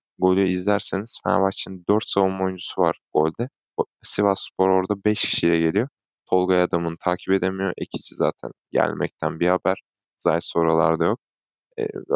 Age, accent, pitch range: 20-39, native, 85-100 Hz